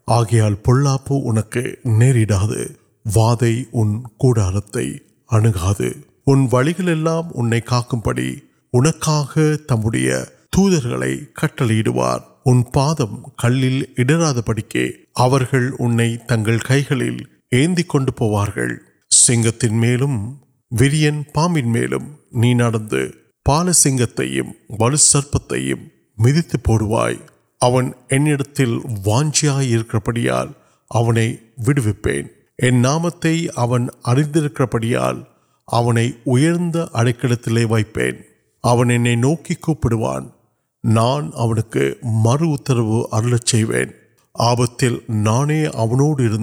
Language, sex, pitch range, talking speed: Urdu, male, 110-135 Hz, 55 wpm